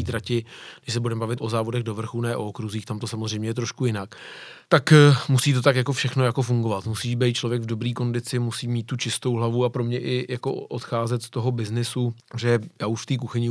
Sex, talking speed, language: male, 230 wpm, Czech